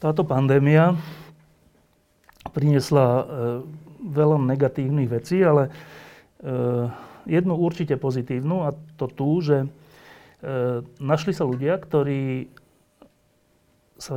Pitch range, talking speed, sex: 125-150 Hz, 95 wpm, male